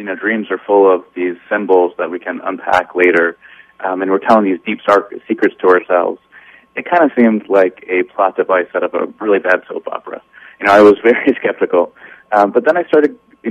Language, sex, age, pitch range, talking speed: English, male, 30-49, 90-110 Hz, 220 wpm